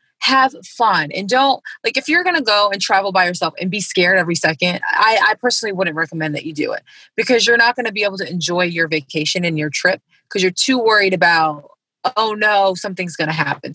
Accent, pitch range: American, 165-210 Hz